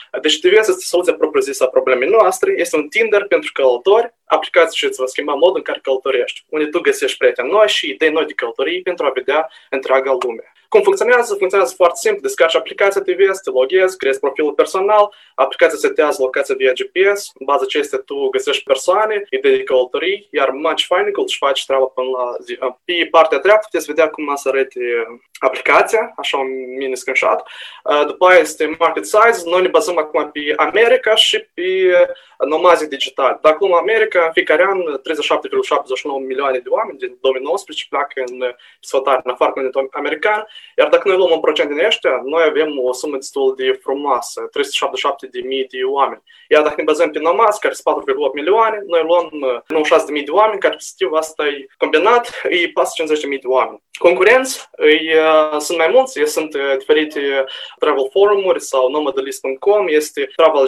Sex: male